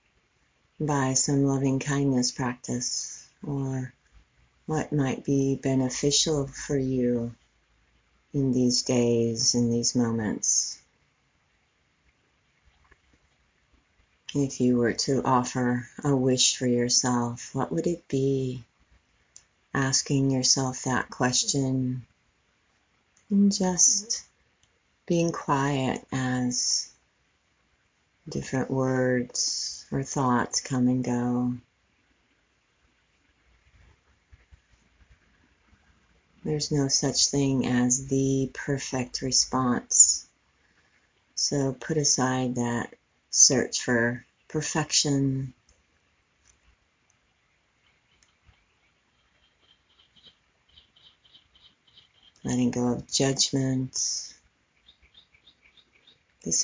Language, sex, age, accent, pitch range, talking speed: English, female, 40-59, American, 120-140 Hz, 70 wpm